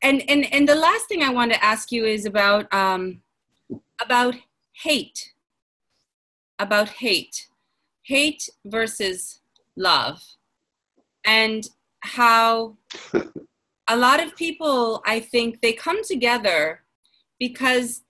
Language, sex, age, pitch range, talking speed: English, female, 30-49, 210-270 Hz, 110 wpm